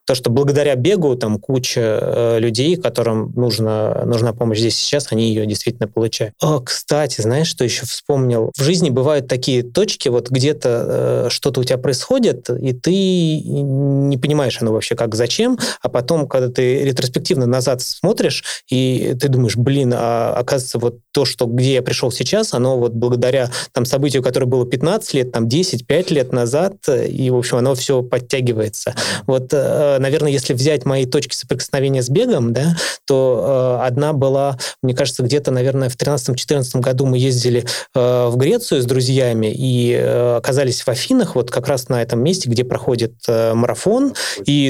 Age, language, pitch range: 20-39, Russian, 120-140 Hz